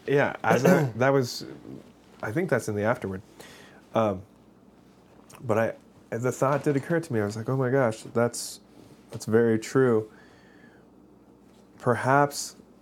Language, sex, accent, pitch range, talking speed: English, male, American, 90-120 Hz, 145 wpm